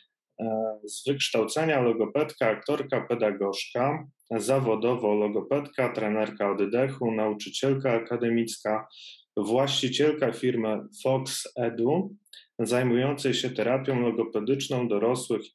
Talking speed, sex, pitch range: 75 wpm, male, 115-140 Hz